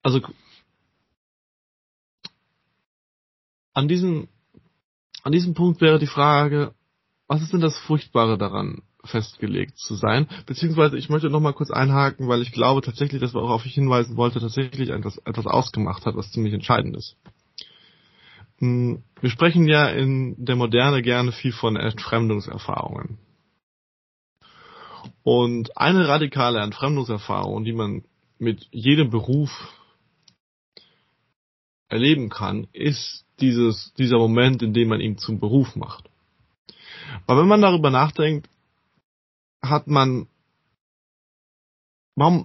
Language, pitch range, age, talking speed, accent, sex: German, 110-145 Hz, 20-39, 120 wpm, German, male